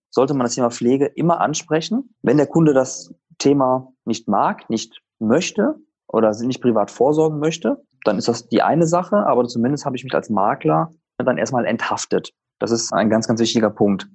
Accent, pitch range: German, 110-150 Hz